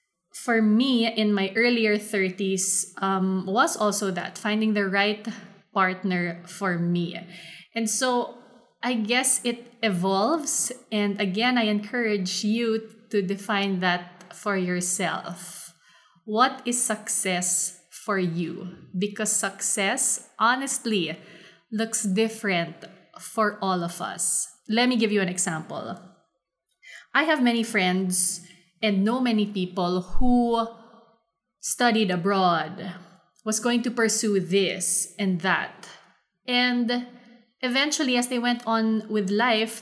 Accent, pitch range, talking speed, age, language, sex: Filipino, 190-235 Hz, 120 wpm, 20-39, English, female